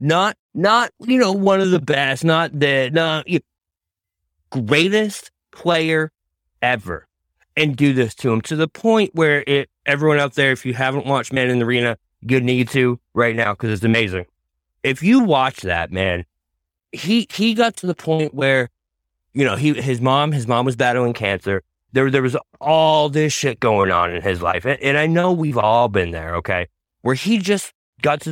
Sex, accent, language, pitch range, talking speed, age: male, American, English, 100-150 Hz, 195 wpm, 30-49